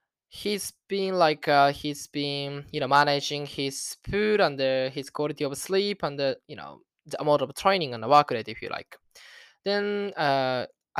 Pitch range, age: 135-165 Hz, 10-29